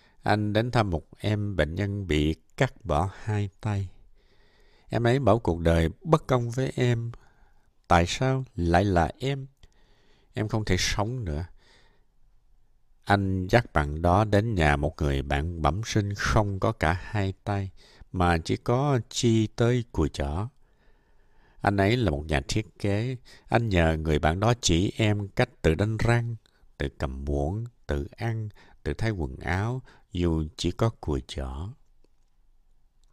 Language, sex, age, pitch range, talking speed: Vietnamese, male, 60-79, 80-115 Hz, 155 wpm